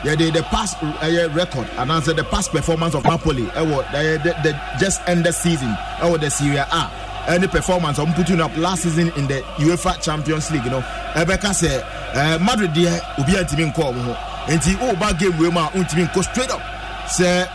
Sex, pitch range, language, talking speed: male, 160-195 Hz, English, 235 wpm